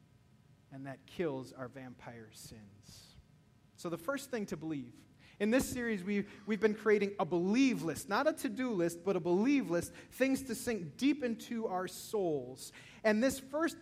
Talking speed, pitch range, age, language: 170 wpm, 170-235 Hz, 30-49, English